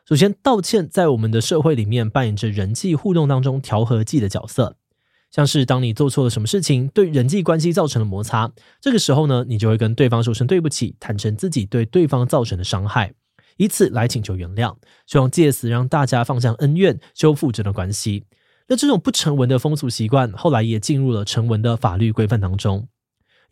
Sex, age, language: male, 20-39, Chinese